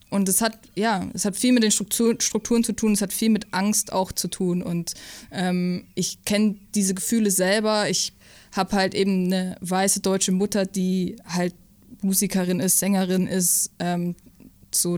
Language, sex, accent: German, female, German